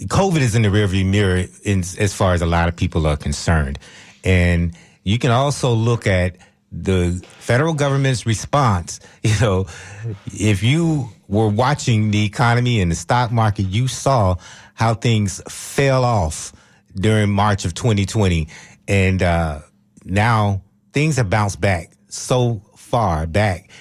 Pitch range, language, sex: 95-120 Hz, English, male